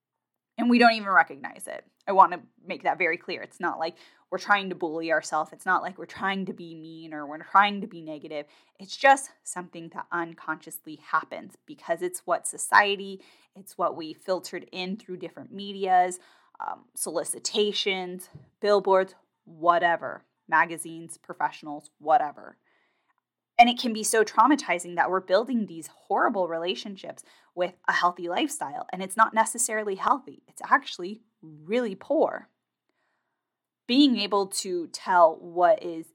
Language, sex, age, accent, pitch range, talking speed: English, female, 10-29, American, 170-215 Hz, 150 wpm